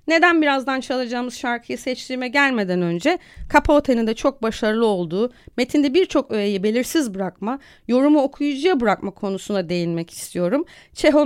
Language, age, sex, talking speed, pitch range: Turkish, 30-49, female, 130 wpm, 200-275 Hz